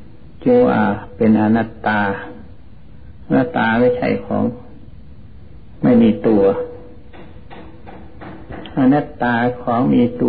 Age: 60-79